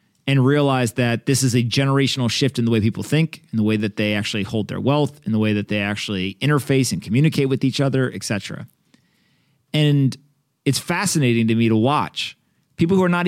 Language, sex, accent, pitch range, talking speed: English, male, American, 115-145 Hz, 210 wpm